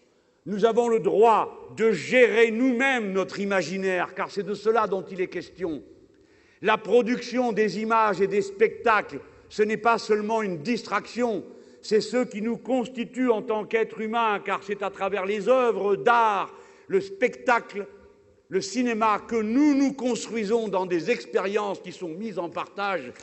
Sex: male